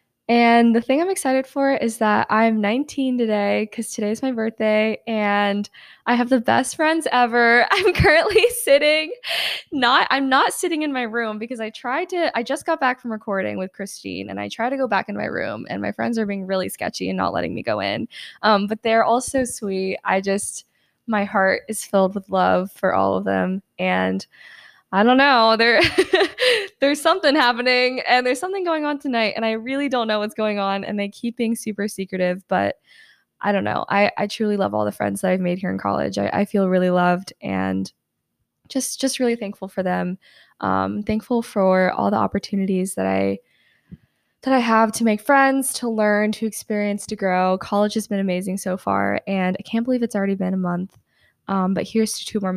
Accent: American